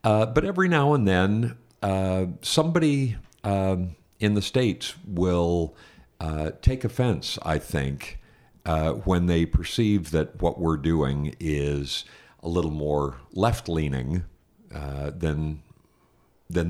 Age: 50-69